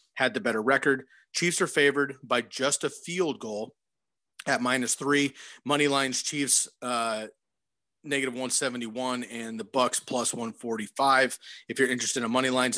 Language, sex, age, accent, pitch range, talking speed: English, male, 30-49, American, 115-135 Hz, 170 wpm